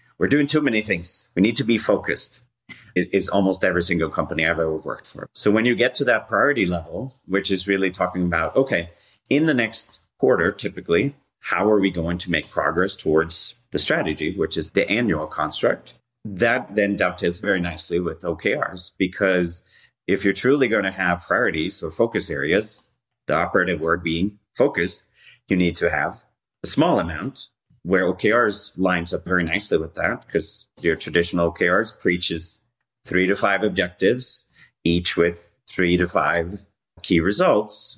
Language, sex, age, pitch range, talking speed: English, male, 30-49, 85-100 Hz, 170 wpm